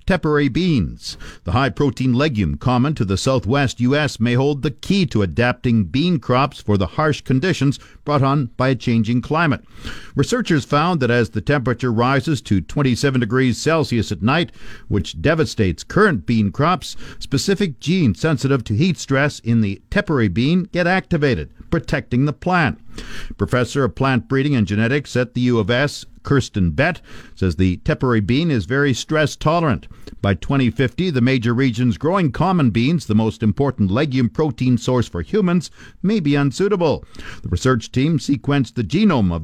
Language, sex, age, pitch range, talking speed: English, male, 50-69, 115-150 Hz, 165 wpm